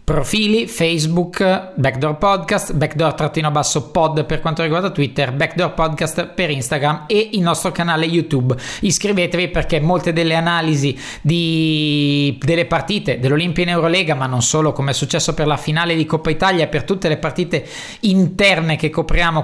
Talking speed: 155 wpm